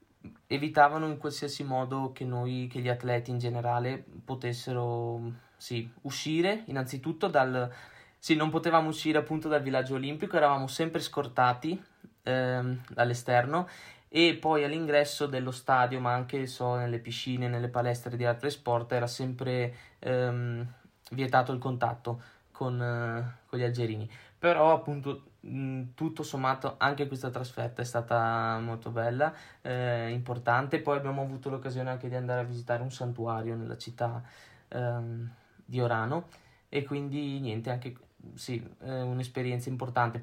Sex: male